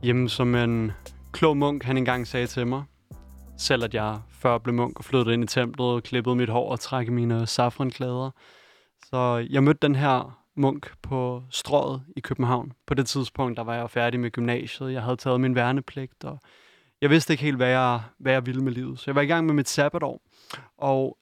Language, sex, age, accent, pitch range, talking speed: Danish, male, 20-39, native, 125-145 Hz, 205 wpm